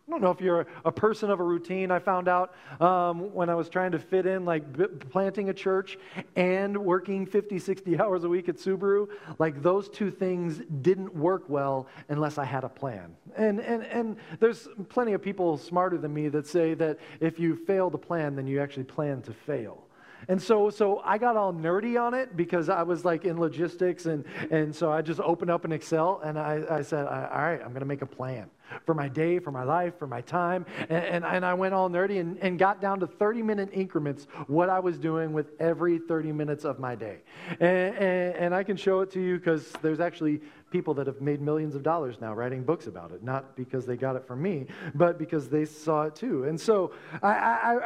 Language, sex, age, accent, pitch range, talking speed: English, male, 40-59, American, 155-190 Hz, 230 wpm